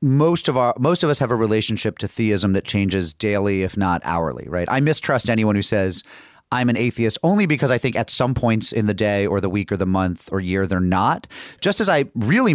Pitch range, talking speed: 100-135 Hz, 240 wpm